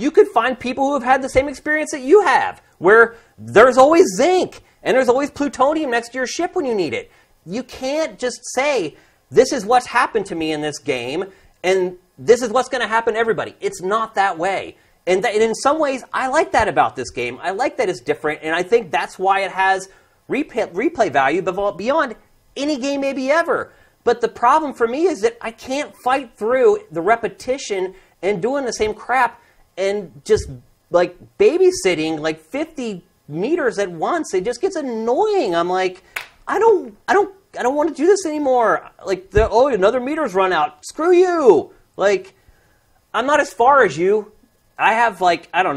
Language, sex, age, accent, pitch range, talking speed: English, male, 30-49, American, 180-295 Hz, 200 wpm